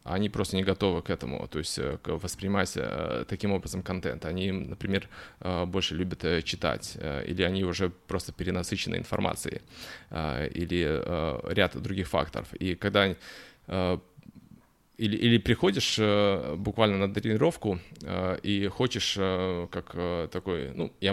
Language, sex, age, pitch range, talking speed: Russian, male, 20-39, 90-105 Hz, 115 wpm